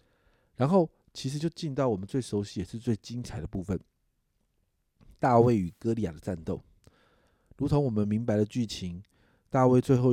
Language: Chinese